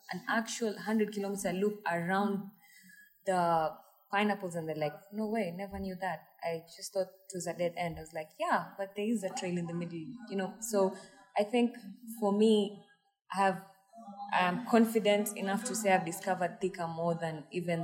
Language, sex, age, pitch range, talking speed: English, female, 20-39, 170-210 Hz, 180 wpm